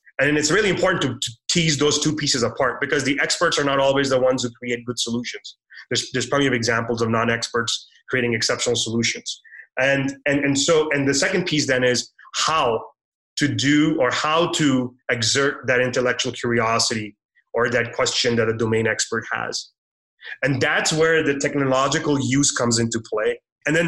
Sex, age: male, 30-49